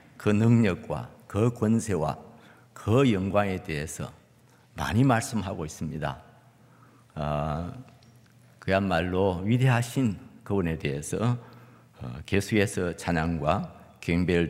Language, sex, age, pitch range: Korean, male, 50-69, 95-120 Hz